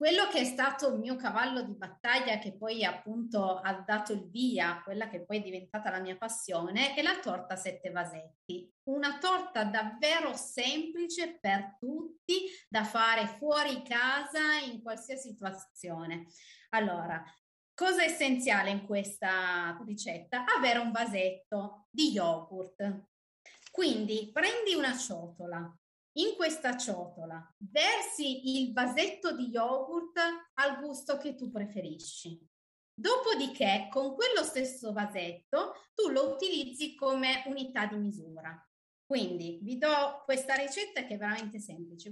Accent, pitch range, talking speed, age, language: native, 195-285 Hz, 130 wpm, 30-49, Italian